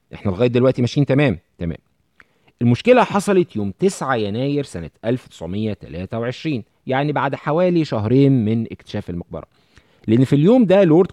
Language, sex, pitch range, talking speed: Arabic, male, 100-150 Hz, 135 wpm